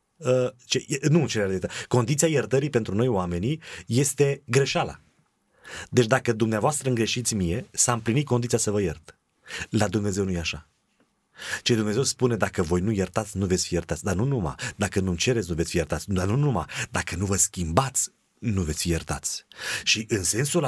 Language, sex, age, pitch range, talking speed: Romanian, male, 30-49, 105-145 Hz, 175 wpm